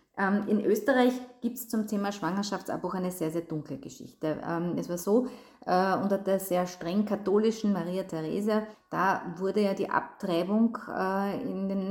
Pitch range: 170-205 Hz